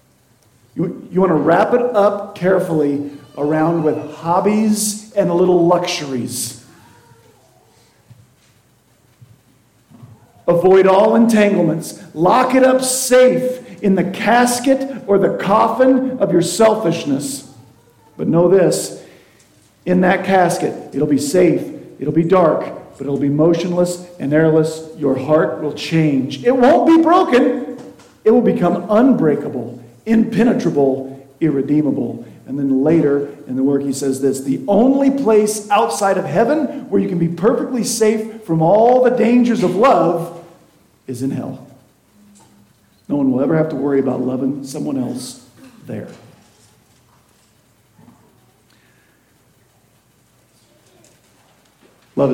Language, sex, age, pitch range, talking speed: English, male, 50-69, 135-210 Hz, 120 wpm